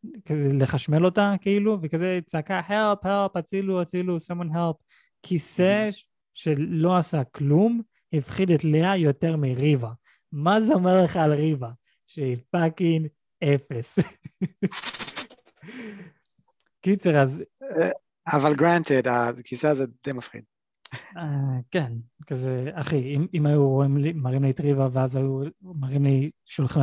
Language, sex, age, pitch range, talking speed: Hebrew, male, 20-39, 130-165 Hz, 115 wpm